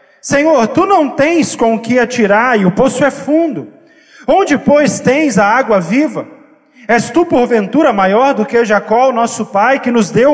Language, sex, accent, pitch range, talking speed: Portuguese, male, Brazilian, 200-265 Hz, 180 wpm